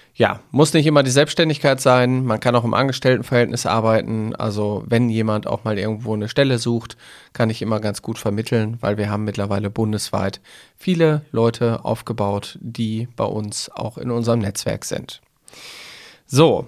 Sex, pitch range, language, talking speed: male, 110-130 Hz, German, 160 wpm